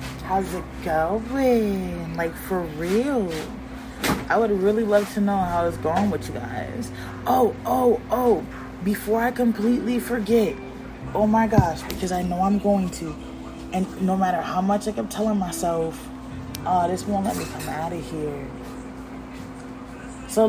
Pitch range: 145-220 Hz